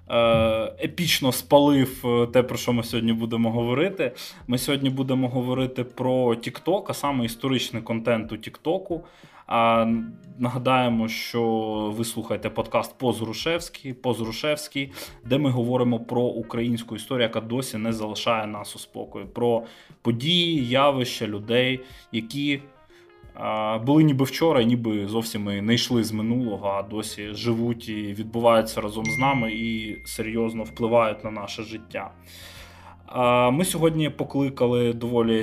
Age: 20-39